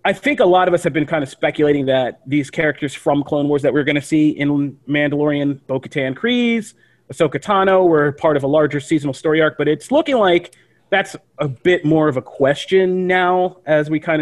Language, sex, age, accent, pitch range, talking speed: English, male, 30-49, American, 135-155 Hz, 215 wpm